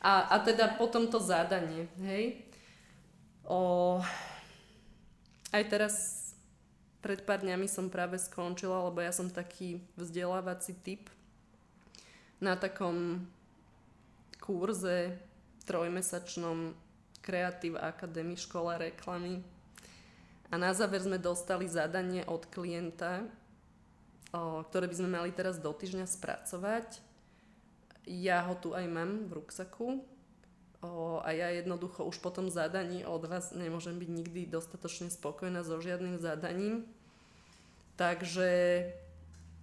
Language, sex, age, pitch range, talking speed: Slovak, female, 20-39, 175-195 Hz, 110 wpm